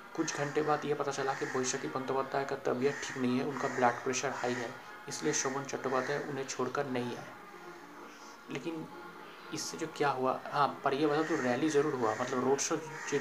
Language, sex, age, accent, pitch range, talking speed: Hindi, male, 30-49, native, 130-145 Hz, 195 wpm